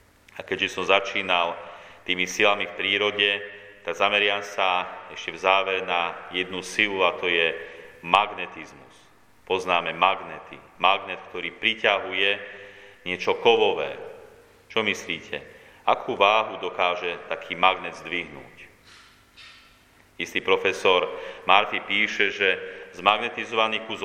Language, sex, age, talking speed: Slovak, male, 30-49, 105 wpm